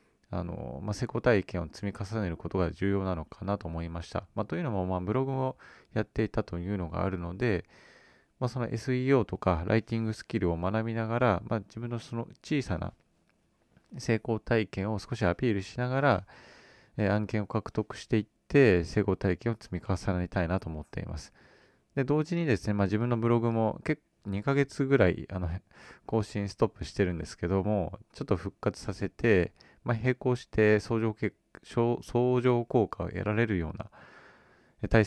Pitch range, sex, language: 95-125 Hz, male, Japanese